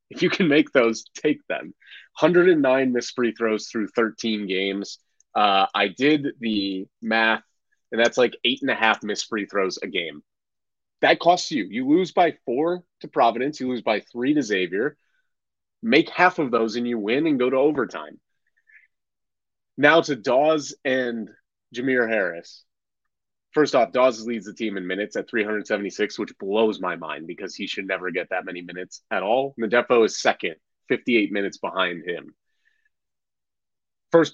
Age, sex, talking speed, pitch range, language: 30-49, male, 165 wpm, 105-150 Hz, English